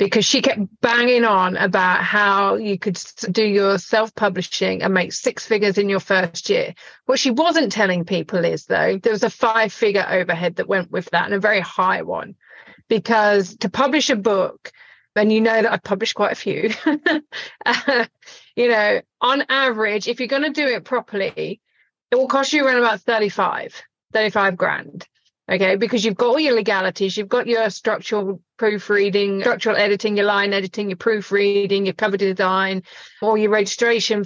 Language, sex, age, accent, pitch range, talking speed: English, female, 30-49, British, 200-245 Hz, 175 wpm